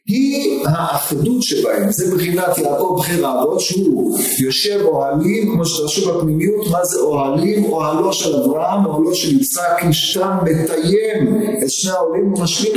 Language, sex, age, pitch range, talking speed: Hebrew, male, 50-69, 155-215 Hz, 140 wpm